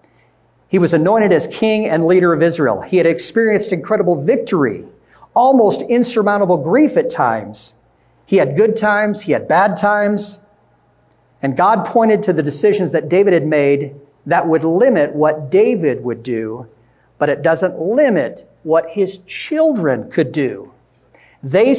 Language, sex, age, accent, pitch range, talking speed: English, male, 50-69, American, 155-210 Hz, 150 wpm